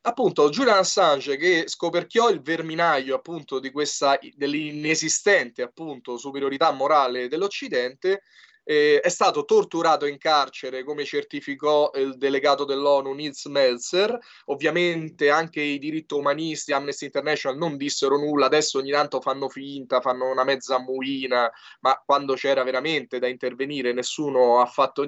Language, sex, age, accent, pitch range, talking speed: Italian, male, 20-39, native, 135-205 Hz, 135 wpm